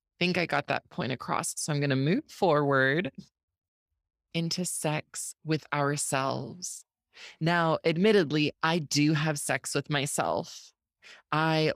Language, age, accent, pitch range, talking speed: English, 20-39, American, 145-190 Hz, 135 wpm